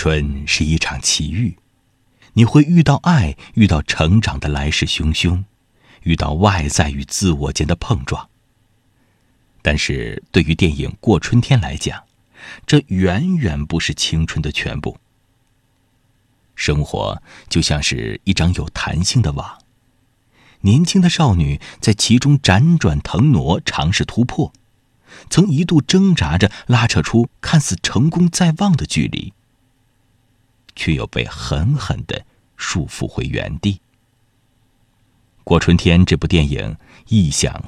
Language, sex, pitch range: Chinese, male, 80-125 Hz